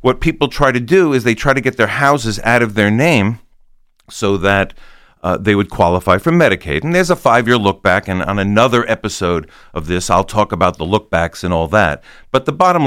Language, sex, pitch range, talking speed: English, male, 90-120 Hz, 215 wpm